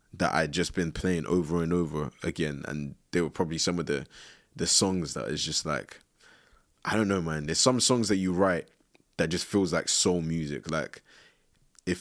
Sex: male